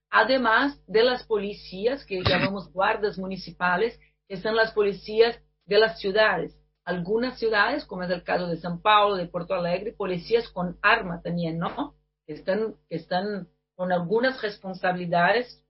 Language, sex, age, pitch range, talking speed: Spanish, female, 40-59, 180-225 Hz, 140 wpm